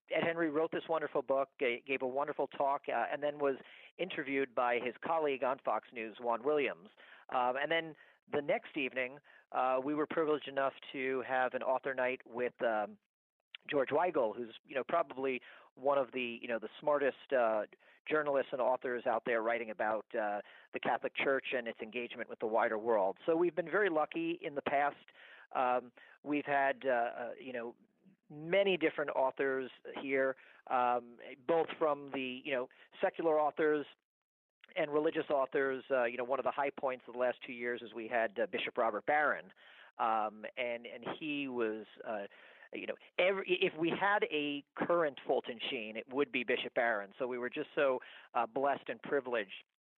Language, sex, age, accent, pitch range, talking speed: English, male, 40-59, American, 125-150 Hz, 180 wpm